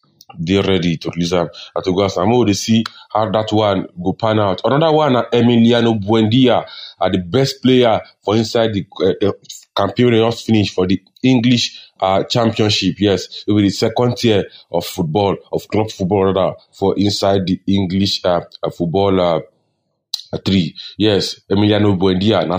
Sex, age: male, 30-49